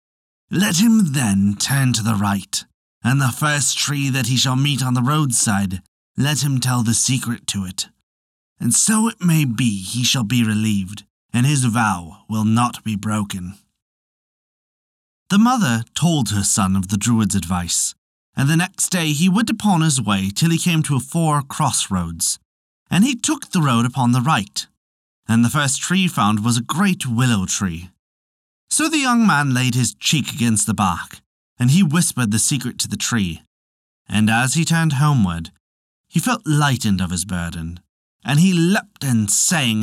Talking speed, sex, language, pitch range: 180 wpm, male, English, 100-155 Hz